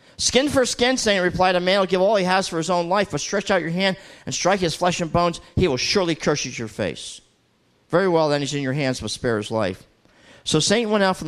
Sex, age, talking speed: male, 50-69, 265 wpm